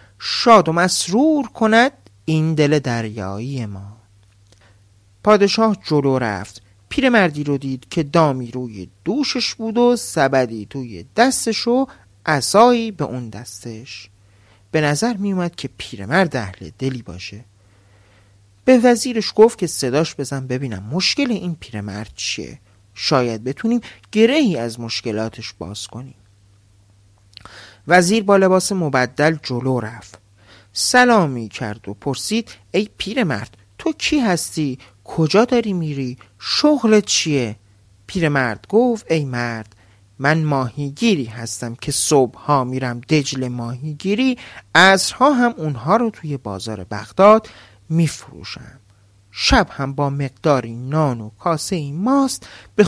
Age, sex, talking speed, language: 40-59, male, 120 wpm, Persian